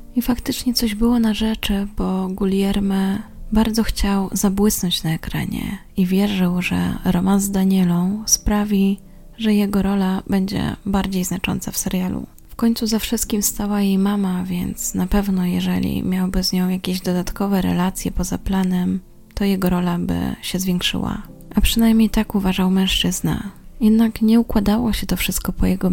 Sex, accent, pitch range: female, native, 185-215 Hz